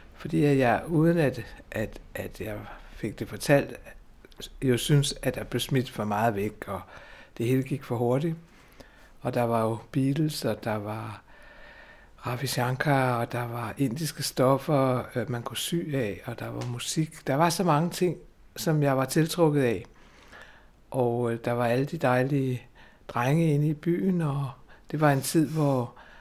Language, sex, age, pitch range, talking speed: Danish, male, 60-79, 120-145 Hz, 170 wpm